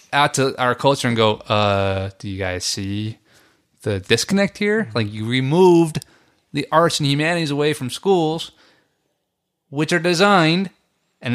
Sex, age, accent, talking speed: male, 30-49, American, 150 wpm